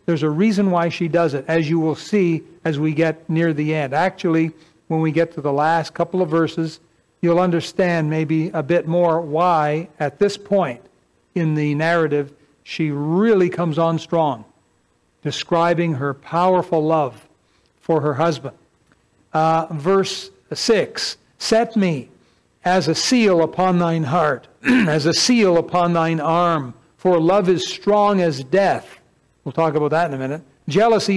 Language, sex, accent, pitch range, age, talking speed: English, male, American, 155-195 Hz, 60-79, 160 wpm